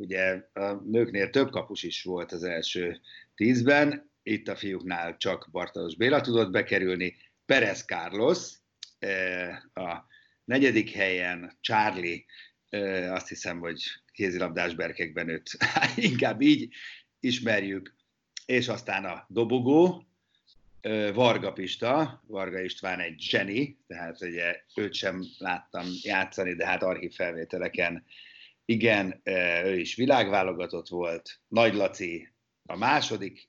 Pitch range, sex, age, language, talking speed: 90-115 Hz, male, 50-69, Hungarian, 115 wpm